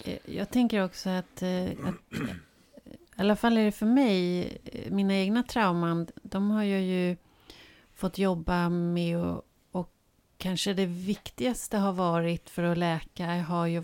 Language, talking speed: Swedish, 145 wpm